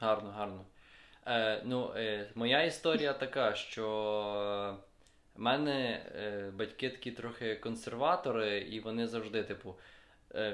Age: 20-39